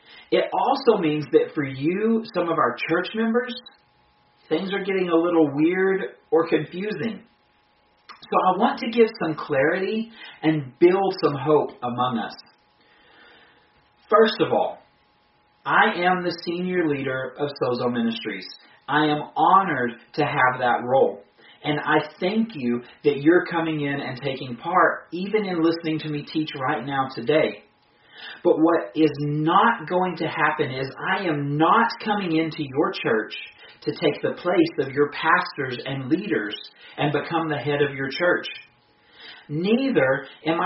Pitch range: 145-190 Hz